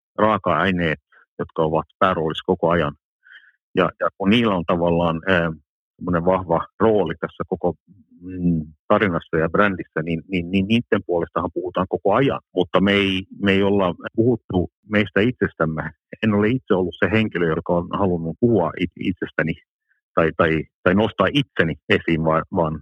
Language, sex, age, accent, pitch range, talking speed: Finnish, male, 60-79, native, 85-105 Hz, 150 wpm